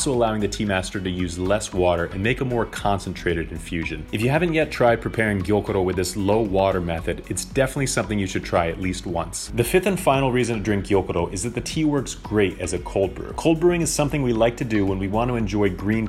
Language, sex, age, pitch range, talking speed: English, male, 30-49, 90-125 Hz, 250 wpm